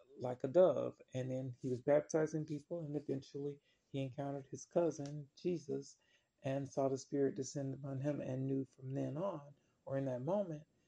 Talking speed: 175 wpm